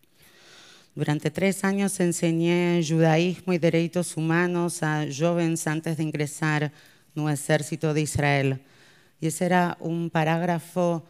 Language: Portuguese